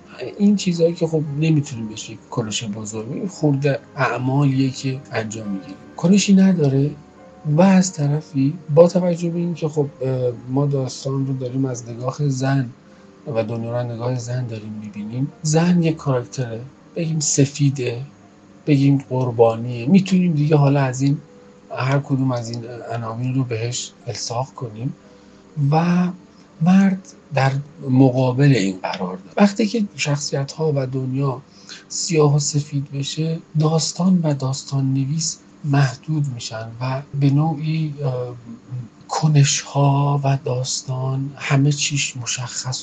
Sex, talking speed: male, 130 wpm